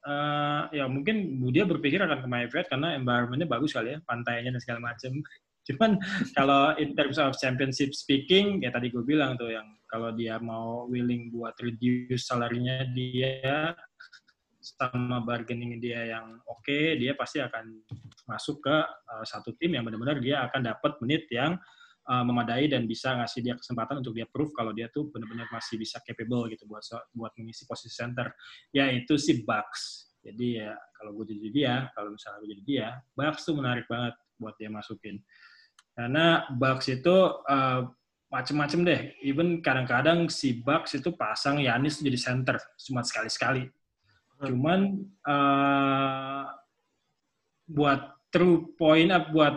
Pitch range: 120-150 Hz